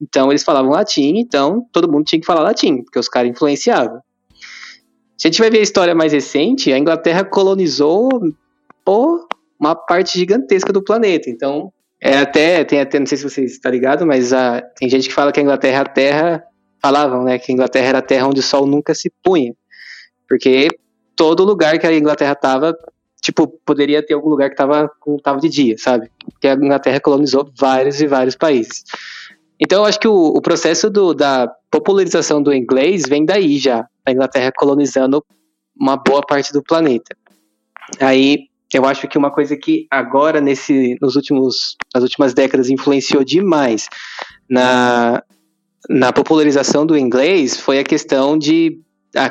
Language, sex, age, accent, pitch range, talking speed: Portuguese, male, 20-39, Brazilian, 130-160 Hz, 180 wpm